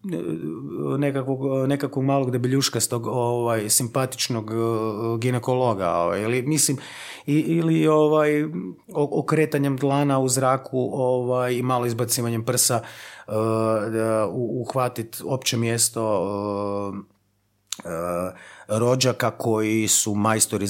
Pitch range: 105-145 Hz